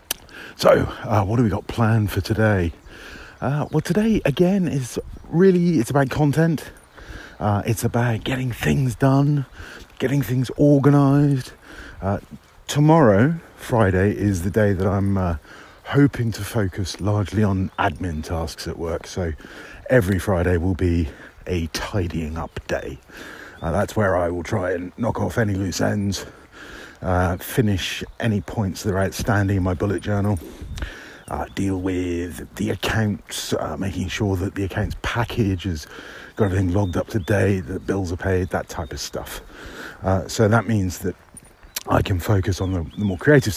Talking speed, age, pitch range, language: 160 wpm, 40-59, 90-115 Hz, English